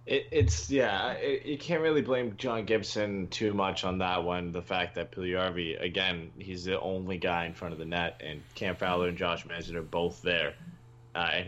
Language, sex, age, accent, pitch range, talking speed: English, male, 20-39, American, 90-110 Hz, 200 wpm